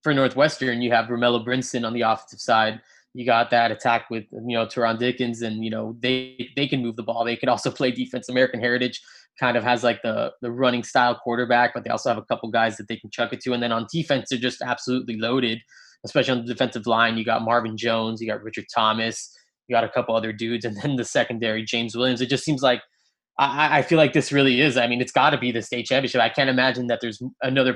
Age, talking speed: 20-39, 250 wpm